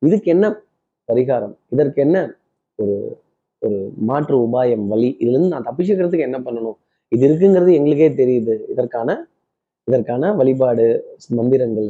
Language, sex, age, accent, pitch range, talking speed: Tamil, male, 20-39, native, 120-180 Hz, 120 wpm